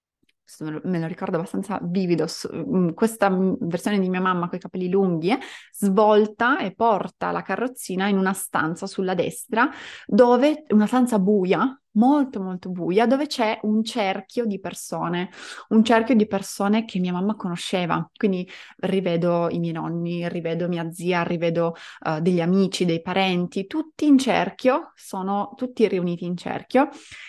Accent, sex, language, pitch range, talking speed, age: native, female, Italian, 180-225 Hz, 145 wpm, 20-39